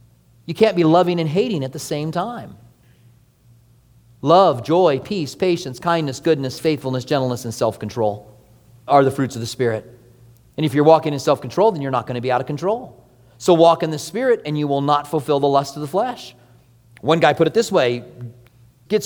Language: English